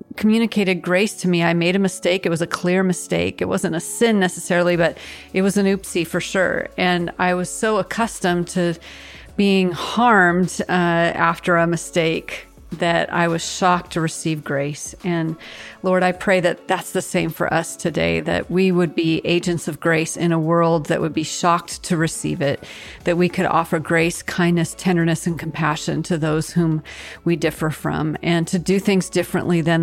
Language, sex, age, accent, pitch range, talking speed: English, female, 40-59, American, 165-190 Hz, 185 wpm